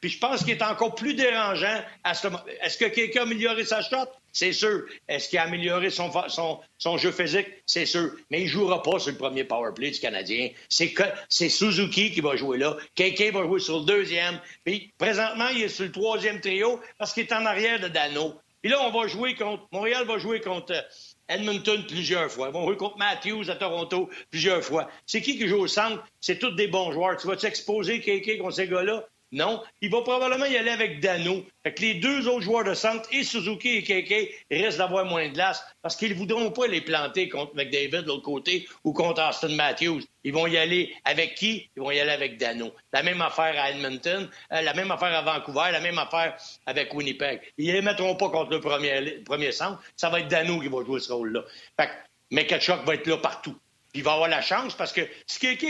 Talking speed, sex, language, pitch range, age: 235 wpm, male, French, 160-215 Hz, 60-79